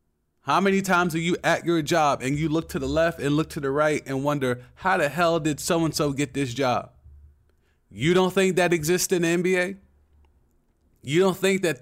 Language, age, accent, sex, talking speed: English, 30-49, American, male, 210 wpm